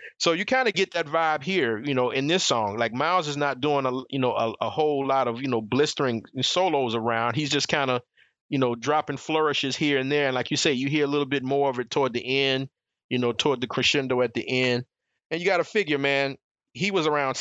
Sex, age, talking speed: male, 30-49, 255 wpm